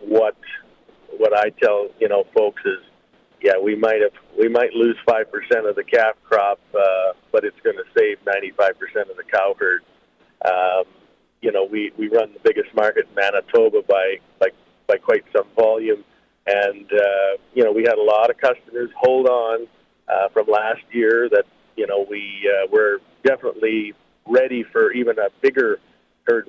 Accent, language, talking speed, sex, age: American, English, 180 wpm, male, 50-69